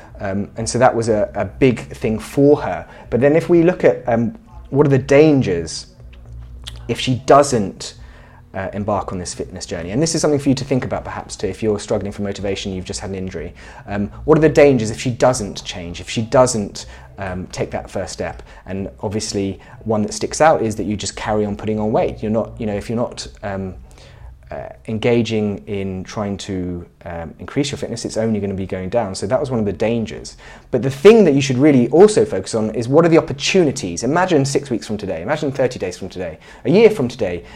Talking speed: 230 wpm